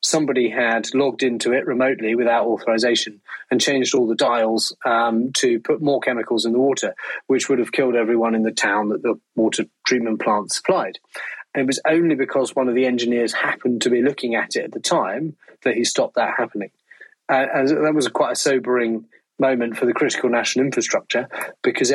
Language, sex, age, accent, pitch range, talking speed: English, male, 30-49, British, 115-135 Hz, 195 wpm